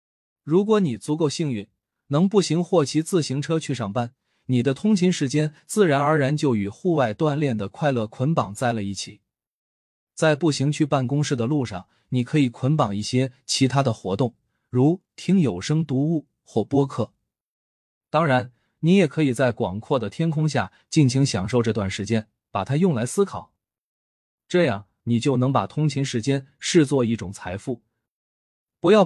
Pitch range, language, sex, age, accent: 115-155 Hz, Chinese, male, 20-39, native